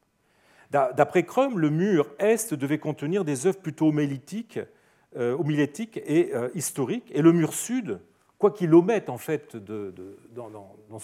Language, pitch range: French, 120-165 Hz